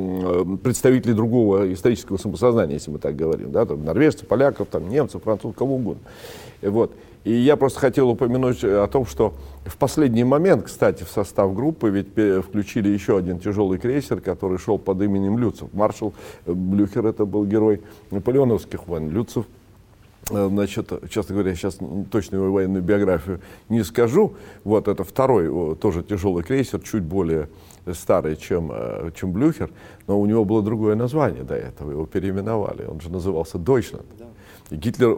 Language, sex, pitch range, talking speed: Russian, male, 95-115 Hz, 150 wpm